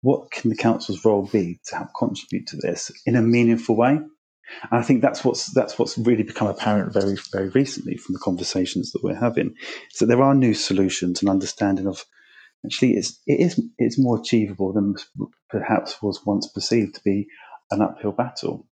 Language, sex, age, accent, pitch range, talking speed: English, male, 30-49, British, 100-115 Hz, 190 wpm